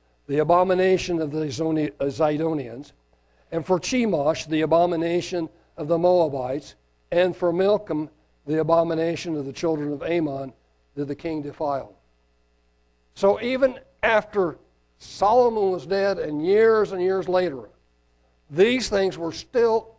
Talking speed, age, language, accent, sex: 125 wpm, 60-79, English, American, male